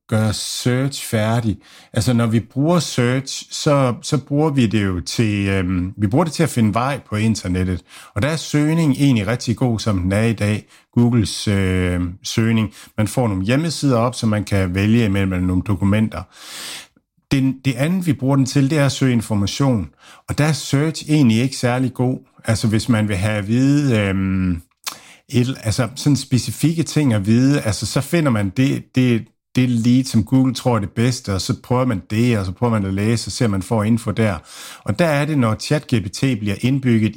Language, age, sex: Danish, 60-79, male